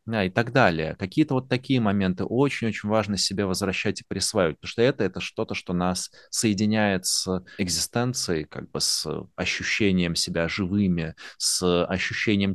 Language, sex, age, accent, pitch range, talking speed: Russian, male, 30-49, native, 90-115 Hz, 150 wpm